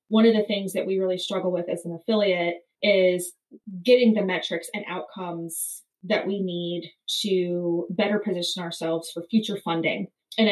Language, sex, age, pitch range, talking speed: English, female, 20-39, 180-210 Hz, 165 wpm